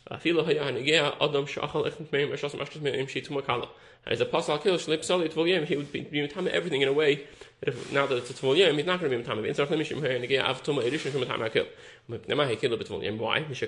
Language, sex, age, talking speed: English, male, 20-39, 65 wpm